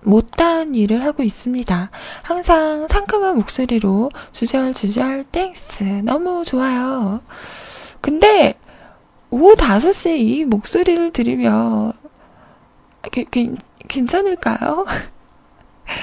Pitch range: 225-305 Hz